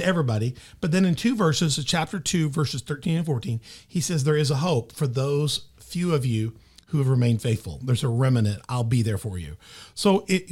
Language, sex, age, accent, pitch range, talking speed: English, male, 40-59, American, 130-175 Hz, 215 wpm